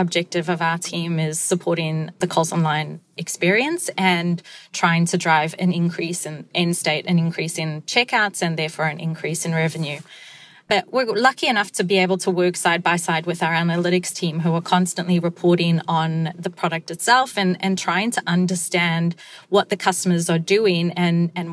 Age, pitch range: 30-49, 170-195 Hz